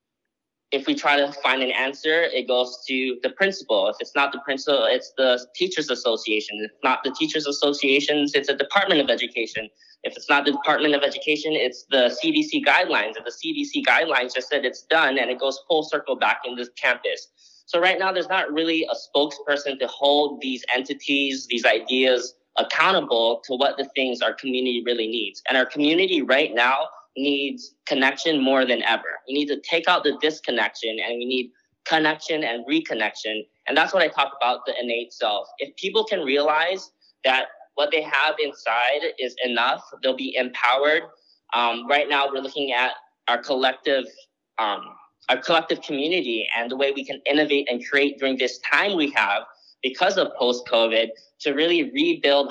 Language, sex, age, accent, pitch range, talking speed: English, male, 20-39, American, 125-160 Hz, 180 wpm